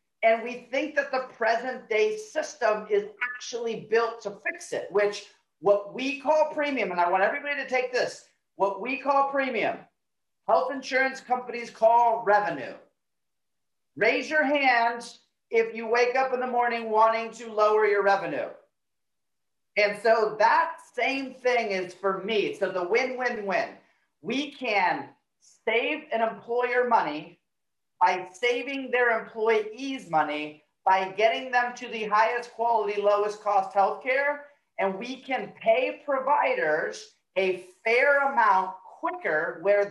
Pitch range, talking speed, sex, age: 200-255 Hz, 140 wpm, male, 40-59